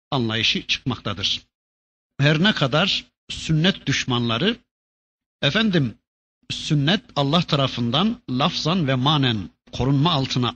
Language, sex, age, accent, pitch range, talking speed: Turkish, male, 60-79, native, 125-170 Hz, 90 wpm